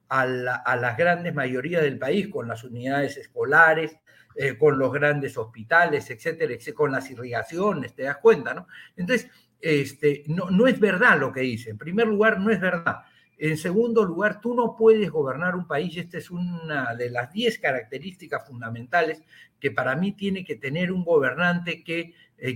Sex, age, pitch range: male, 60-79, 135-200 Hz